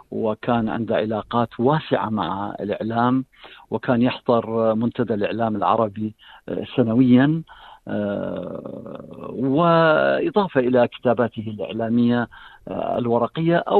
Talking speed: 75 wpm